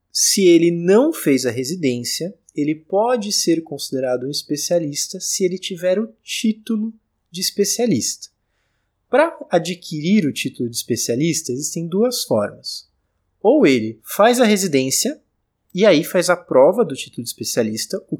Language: Portuguese